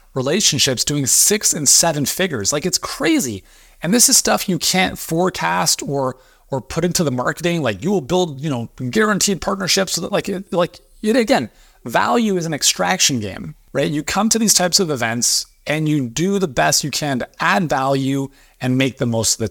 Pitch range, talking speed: 120-175 Hz, 190 wpm